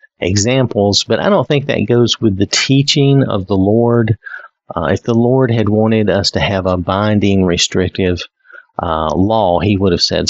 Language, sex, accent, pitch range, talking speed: English, male, American, 85-110 Hz, 180 wpm